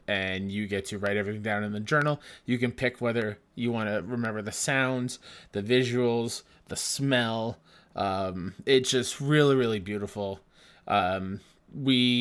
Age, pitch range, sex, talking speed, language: 20-39, 110-135 Hz, male, 155 wpm, English